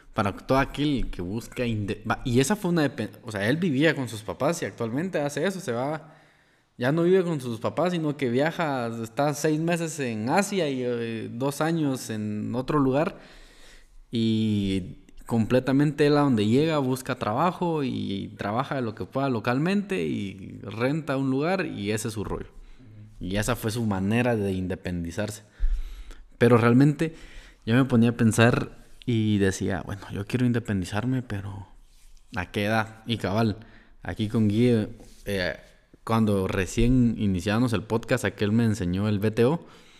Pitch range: 105-130 Hz